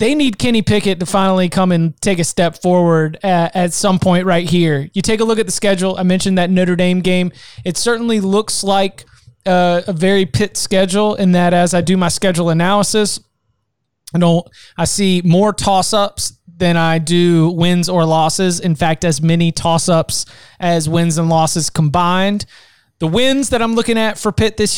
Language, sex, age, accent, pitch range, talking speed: English, male, 20-39, American, 170-195 Hz, 190 wpm